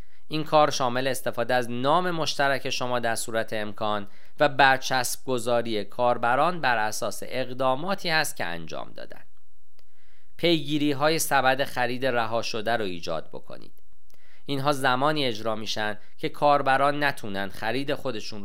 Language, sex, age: Persian, male, 40-59